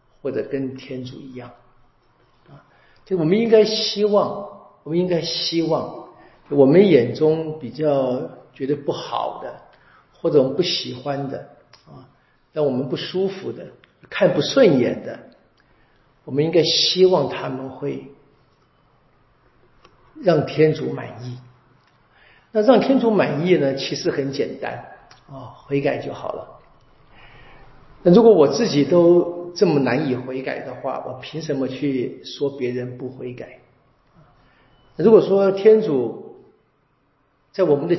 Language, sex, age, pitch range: Chinese, male, 50-69, 130-165 Hz